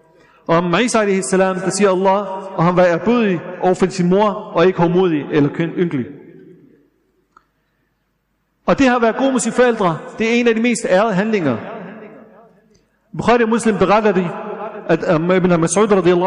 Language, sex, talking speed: Danish, male, 160 wpm